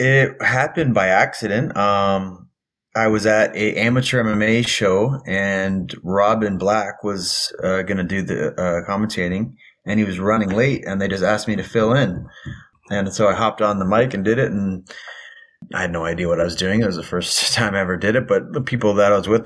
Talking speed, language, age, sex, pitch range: 220 wpm, English, 30-49, male, 95-115 Hz